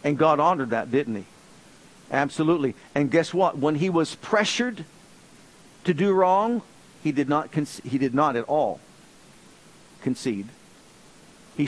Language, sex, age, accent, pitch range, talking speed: English, male, 50-69, American, 150-205 Hz, 145 wpm